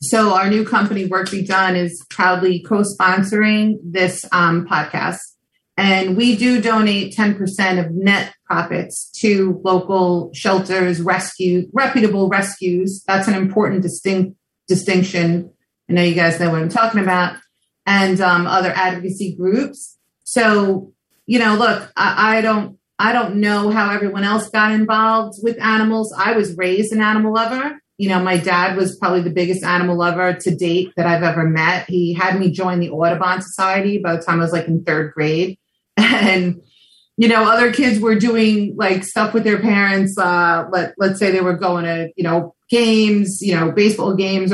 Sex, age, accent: female, 30-49, American